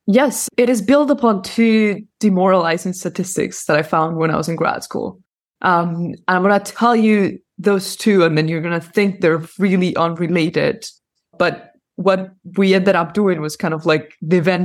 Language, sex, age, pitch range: English, female, 20-39, 165-205 Hz